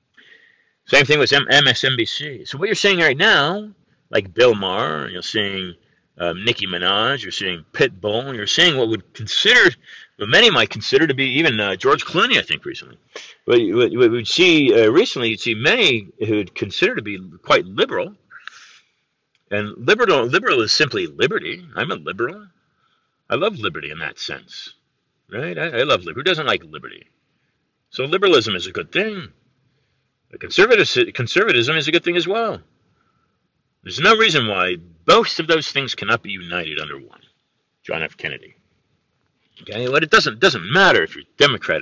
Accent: American